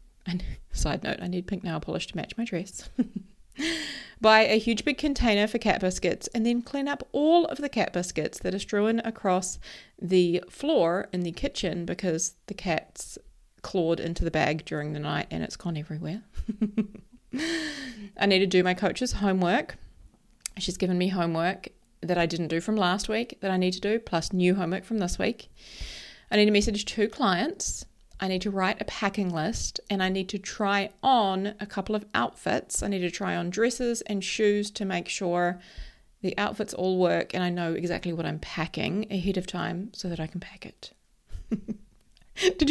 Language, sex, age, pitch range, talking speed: English, female, 30-49, 180-230 Hz, 190 wpm